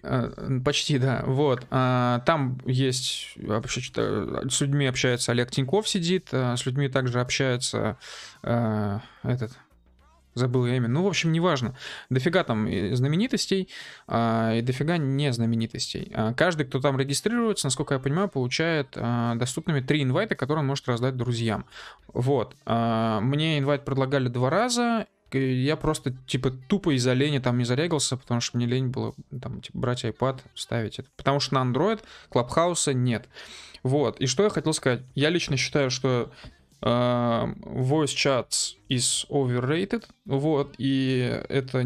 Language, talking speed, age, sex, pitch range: Russian, 140 wpm, 20-39, male, 125-145 Hz